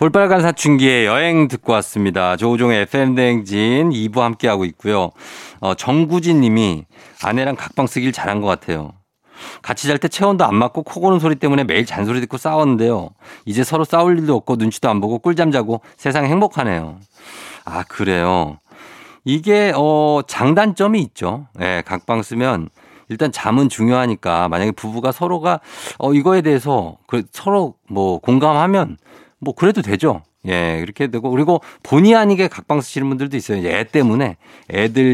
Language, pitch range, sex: Korean, 100-150 Hz, male